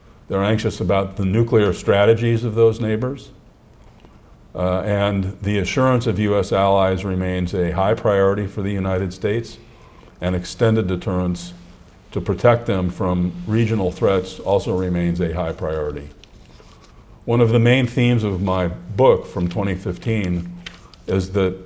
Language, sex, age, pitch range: Japanese, male, 50-69, 90-115 Hz